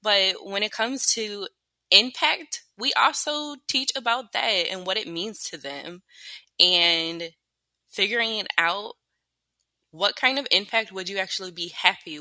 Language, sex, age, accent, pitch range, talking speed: English, female, 20-39, American, 165-230 Hz, 145 wpm